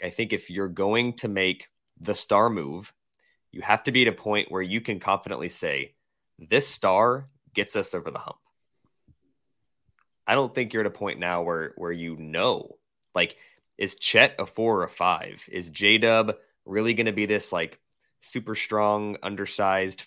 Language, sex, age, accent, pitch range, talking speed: English, male, 20-39, American, 95-120 Hz, 180 wpm